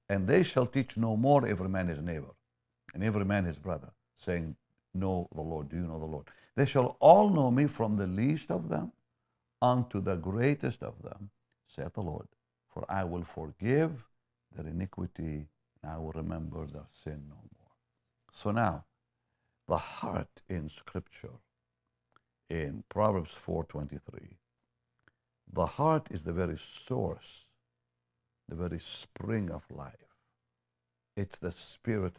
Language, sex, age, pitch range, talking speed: English, male, 60-79, 75-105 Hz, 145 wpm